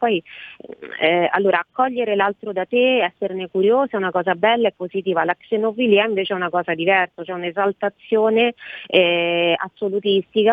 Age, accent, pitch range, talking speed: 30-49, native, 175-205 Hz, 160 wpm